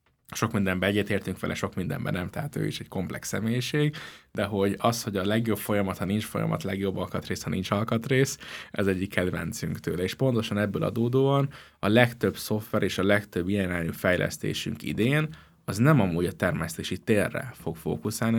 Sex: male